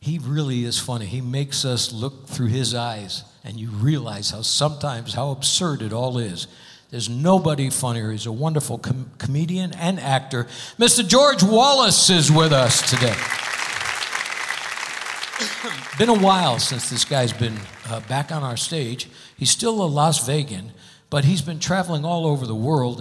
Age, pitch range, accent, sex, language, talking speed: 60-79, 125-165 Hz, American, male, English, 160 wpm